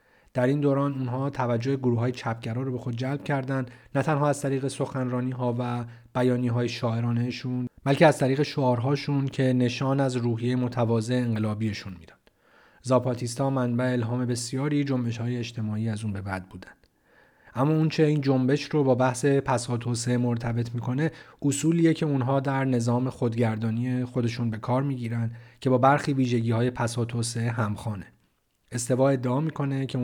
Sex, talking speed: male, 145 wpm